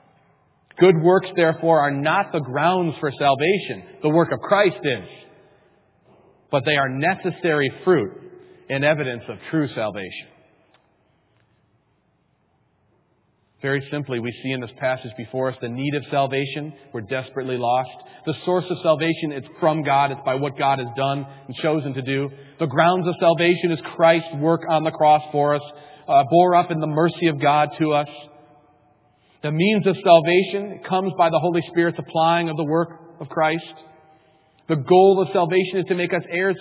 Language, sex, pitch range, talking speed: English, male, 140-175 Hz, 170 wpm